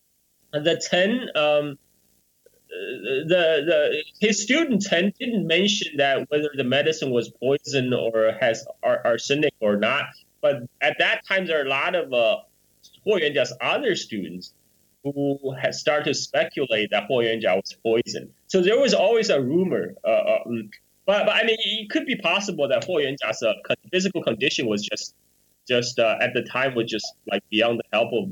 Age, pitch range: 20-39, 115-190 Hz